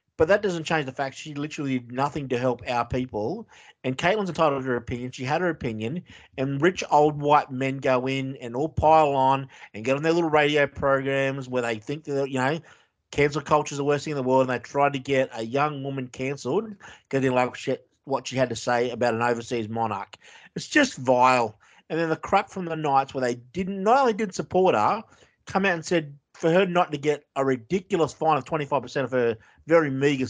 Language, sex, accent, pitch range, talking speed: English, male, Australian, 130-175 Hz, 230 wpm